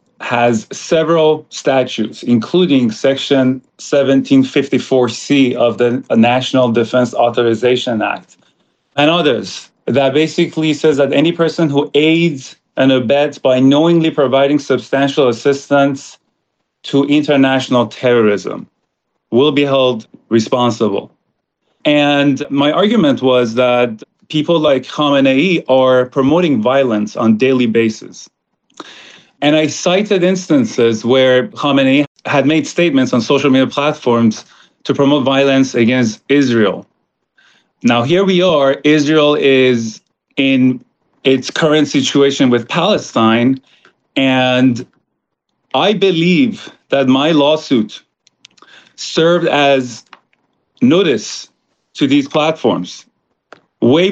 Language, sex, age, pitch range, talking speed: English, male, 30-49, 125-150 Hz, 105 wpm